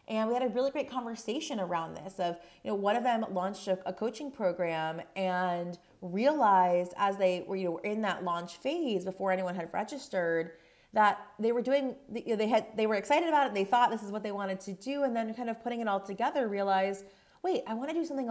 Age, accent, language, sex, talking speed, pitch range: 30-49, American, English, female, 245 wpm, 180-230 Hz